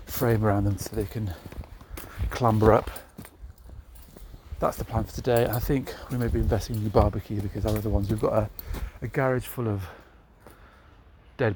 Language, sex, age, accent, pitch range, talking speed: English, male, 40-59, British, 85-110 Hz, 170 wpm